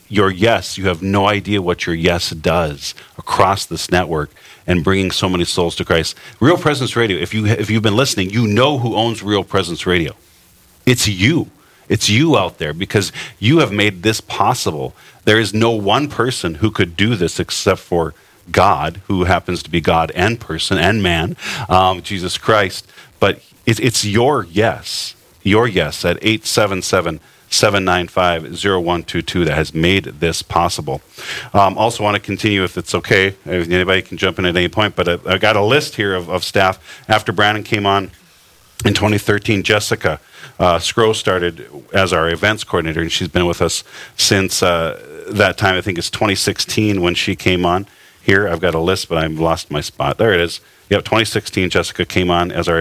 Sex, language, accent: male, English, American